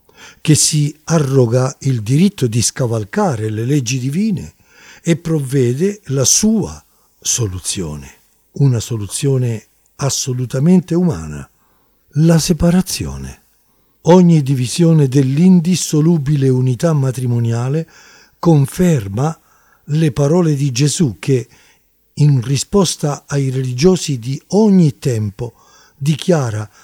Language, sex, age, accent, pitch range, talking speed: Italian, male, 50-69, native, 125-170 Hz, 90 wpm